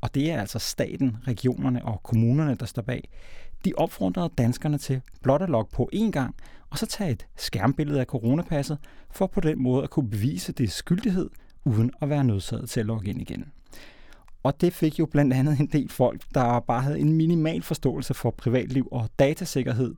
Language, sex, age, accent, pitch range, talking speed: Danish, male, 30-49, native, 120-145 Hz, 195 wpm